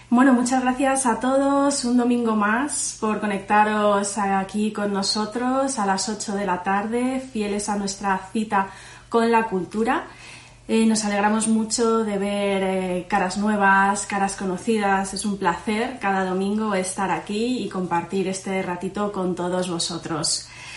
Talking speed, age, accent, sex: 145 wpm, 20-39, Spanish, female